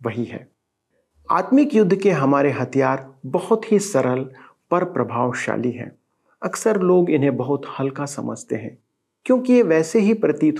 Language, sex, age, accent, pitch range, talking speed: Hindi, male, 40-59, native, 135-200 Hz, 140 wpm